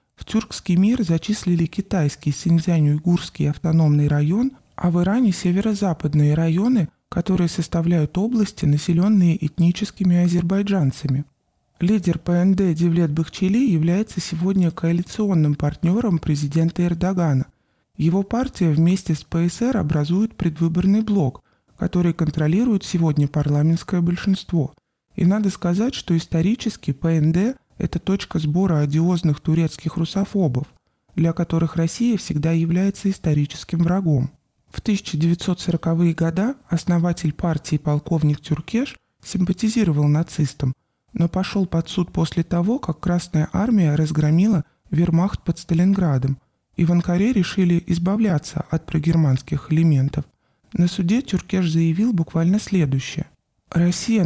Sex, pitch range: male, 155-190 Hz